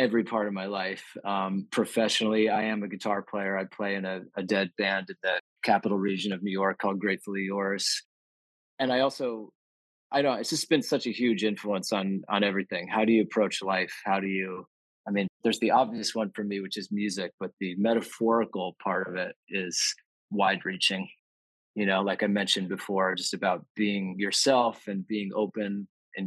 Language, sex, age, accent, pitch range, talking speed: English, male, 20-39, American, 95-120 Hz, 195 wpm